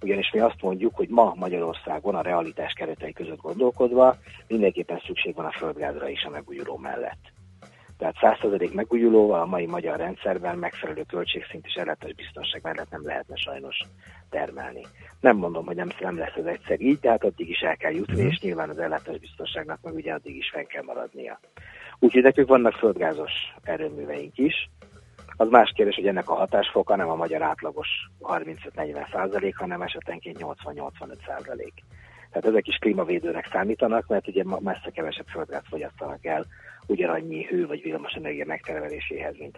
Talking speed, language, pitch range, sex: 160 wpm, Hungarian, 85-135 Hz, male